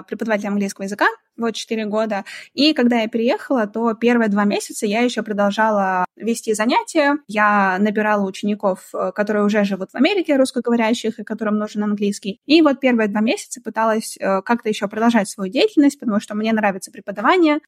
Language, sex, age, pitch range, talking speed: Russian, female, 20-39, 200-245 Hz, 165 wpm